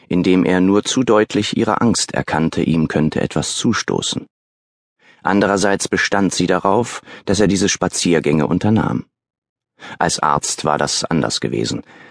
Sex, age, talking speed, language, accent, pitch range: male, 30-49, 135 wpm, German, German, 75-100 Hz